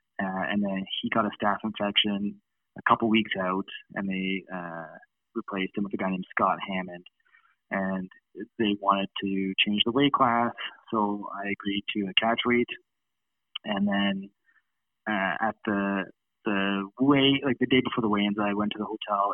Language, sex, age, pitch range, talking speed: English, male, 20-39, 95-110 Hz, 175 wpm